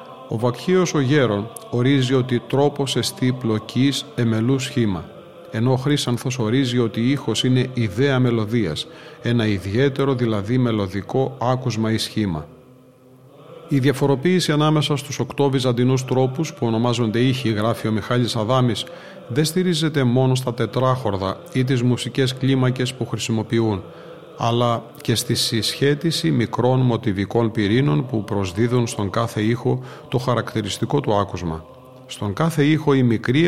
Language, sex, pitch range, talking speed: Greek, male, 110-135 Hz, 135 wpm